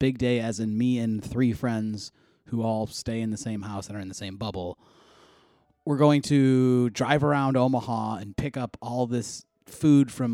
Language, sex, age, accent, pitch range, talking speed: English, male, 30-49, American, 110-140 Hz, 195 wpm